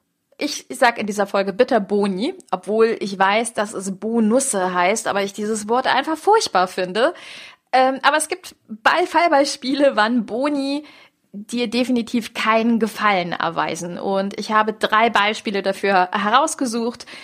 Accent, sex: German, female